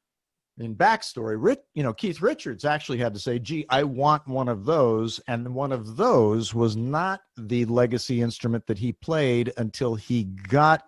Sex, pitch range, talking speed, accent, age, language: male, 105-135 Hz, 170 wpm, American, 50-69, English